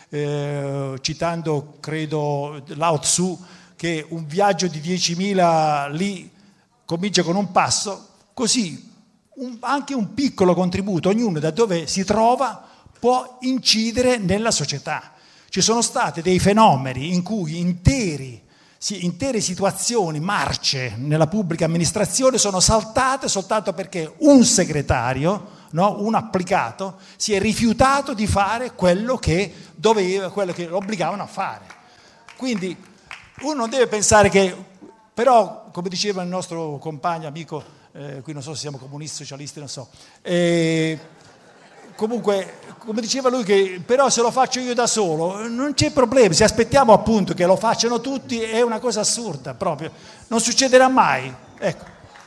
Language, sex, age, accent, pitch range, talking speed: Italian, male, 50-69, native, 165-225 Hz, 140 wpm